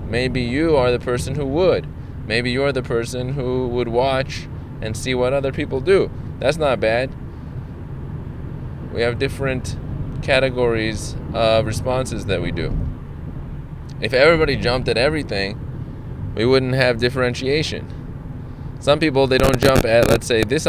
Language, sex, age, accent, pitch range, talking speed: English, male, 20-39, American, 105-130 Hz, 145 wpm